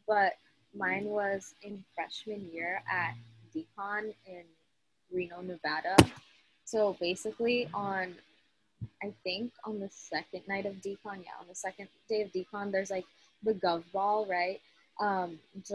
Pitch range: 180-220 Hz